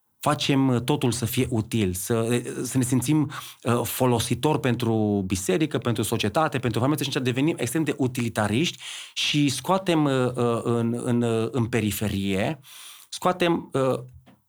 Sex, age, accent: male, 30-49, native